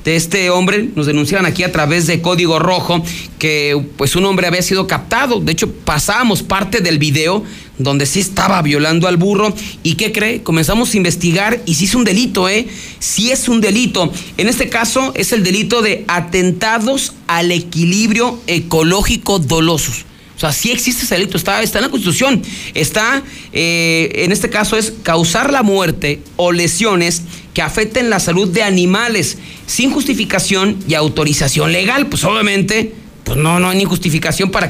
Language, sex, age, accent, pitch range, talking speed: Spanish, male, 40-59, Mexican, 170-220 Hz, 175 wpm